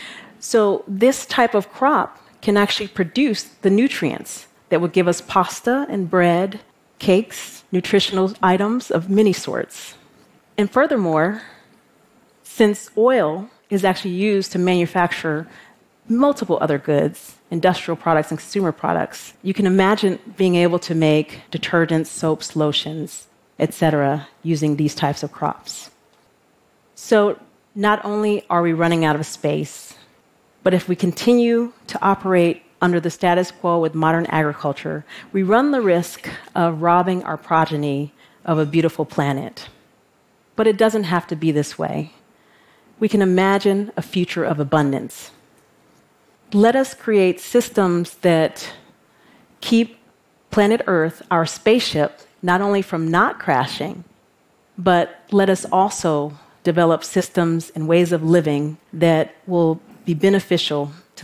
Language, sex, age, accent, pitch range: Korean, female, 40-59, American, 160-205 Hz